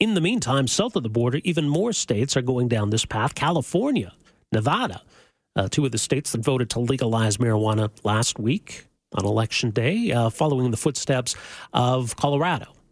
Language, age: English, 50-69